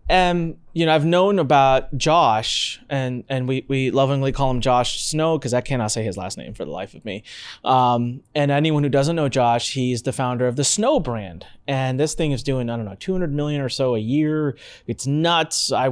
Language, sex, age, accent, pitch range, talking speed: English, male, 30-49, American, 125-160 Hz, 220 wpm